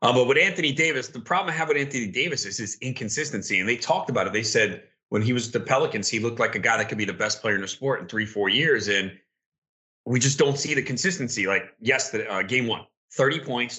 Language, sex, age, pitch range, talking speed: English, male, 30-49, 105-140 Hz, 255 wpm